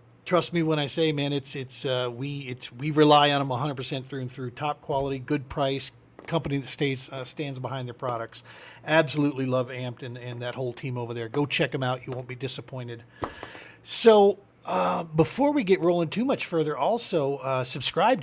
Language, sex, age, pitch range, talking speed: English, male, 40-59, 125-165 Hz, 200 wpm